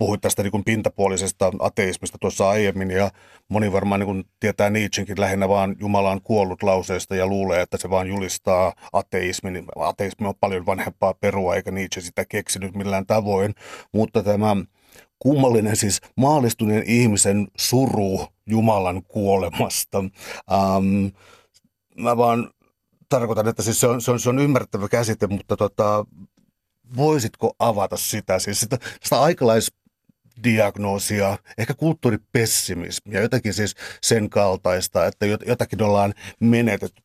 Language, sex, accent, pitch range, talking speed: Finnish, male, native, 95-115 Hz, 130 wpm